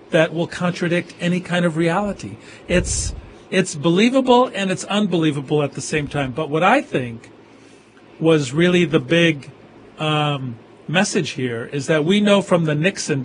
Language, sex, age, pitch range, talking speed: English, male, 50-69, 145-175 Hz, 160 wpm